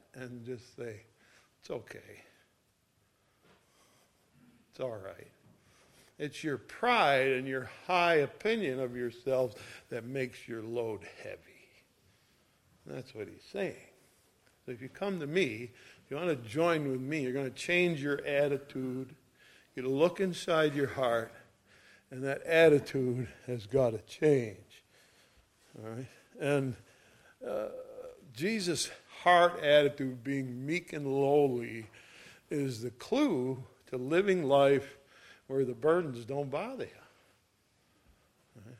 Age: 60-79